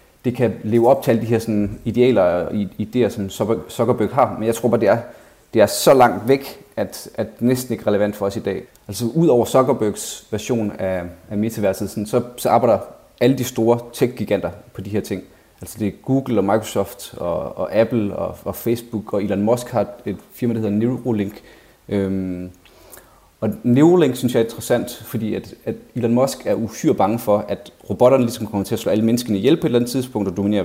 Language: Danish